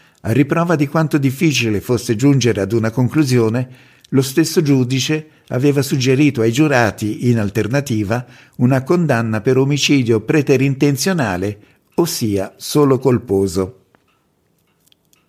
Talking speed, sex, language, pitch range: 105 wpm, male, Italian, 115-150 Hz